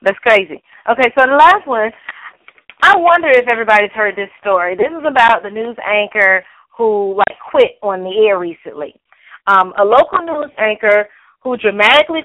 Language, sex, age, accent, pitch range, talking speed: English, female, 30-49, American, 200-250 Hz, 165 wpm